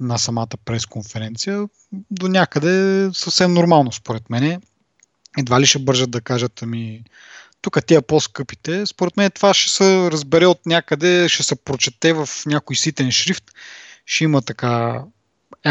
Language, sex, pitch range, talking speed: Bulgarian, male, 120-165 Hz, 140 wpm